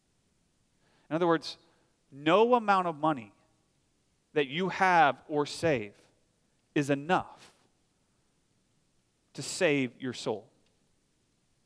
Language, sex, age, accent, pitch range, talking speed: English, male, 40-59, American, 140-190 Hz, 95 wpm